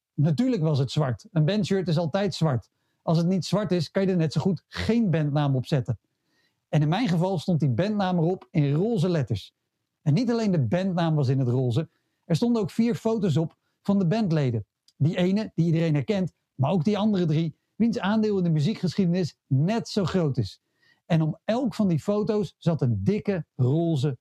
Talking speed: 205 wpm